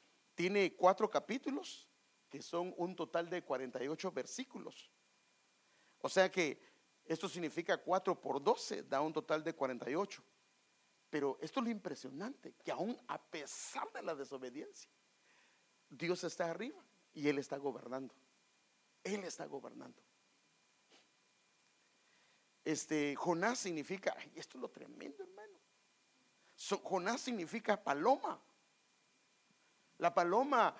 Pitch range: 155-225 Hz